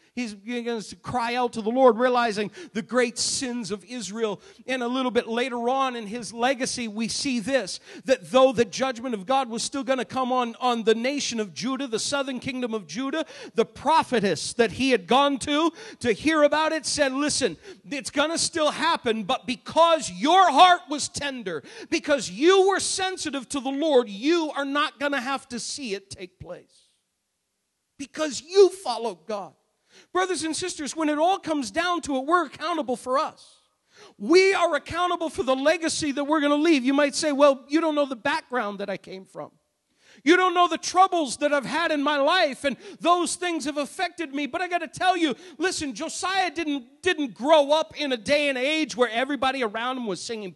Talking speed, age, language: 205 wpm, 50-69, English